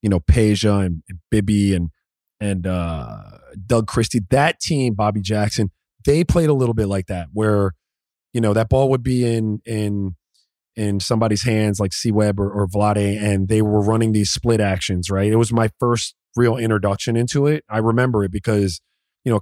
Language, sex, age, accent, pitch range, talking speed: English, male, 30-49, American, 100-125 Hz, 190 wpm